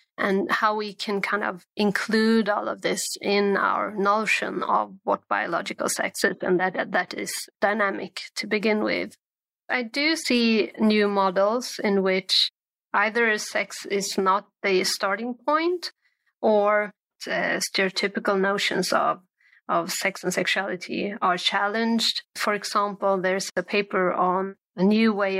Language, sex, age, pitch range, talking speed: English, female, 30-49, 190-215 Hz, 140 wpm